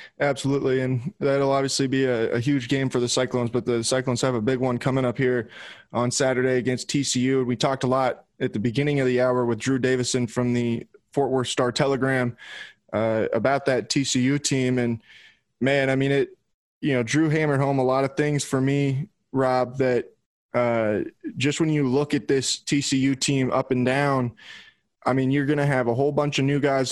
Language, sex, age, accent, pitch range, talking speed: English, male, 20-39, American, 125-140 Hz, 205 wpm